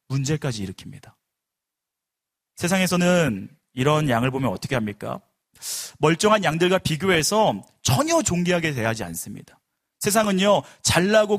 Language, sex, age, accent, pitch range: Korean, male, 30-49, native, 130-195 Hz